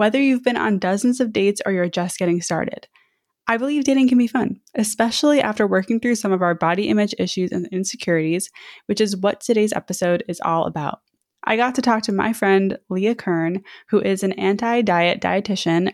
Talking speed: 195 wpm